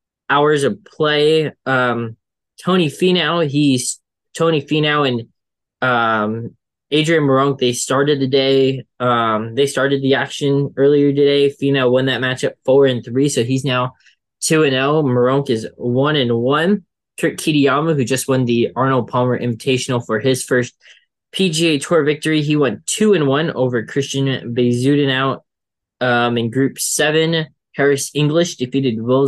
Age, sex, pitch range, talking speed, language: 10-29, male, 125-150 Hz, 155 wpm, English